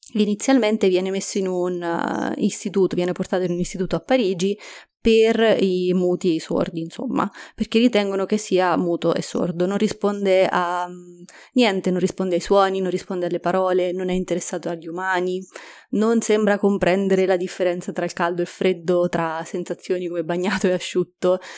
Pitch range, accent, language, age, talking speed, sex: 180-210 Hz, native, Italian, 20-39, 170 wpm, female